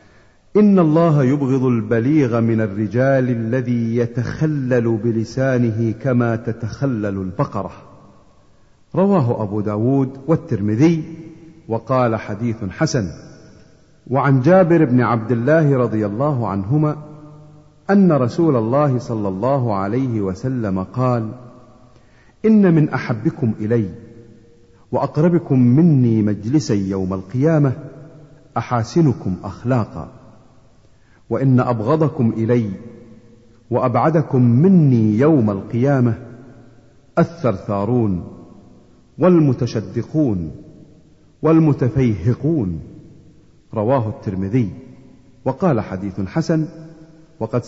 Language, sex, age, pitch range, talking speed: Arabic, male, 50-69, 115-150 Hz, 80 wpm